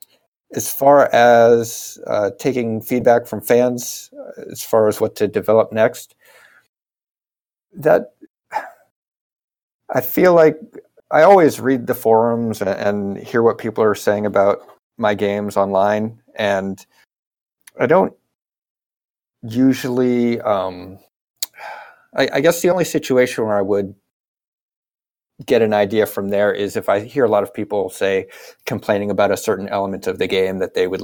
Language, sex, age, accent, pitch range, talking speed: Italian, male, 50-69, American, 100-140 Hz, 145 wpm